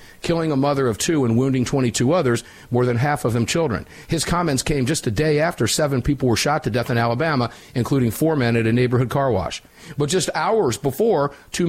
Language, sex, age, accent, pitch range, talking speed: English, male, 50-69, American, 110-145 Hz, 220 wpm